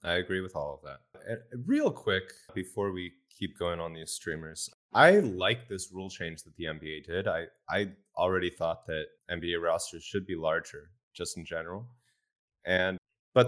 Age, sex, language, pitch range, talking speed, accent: 20-39, male, English, 90-115 Hz, 175 wpm, American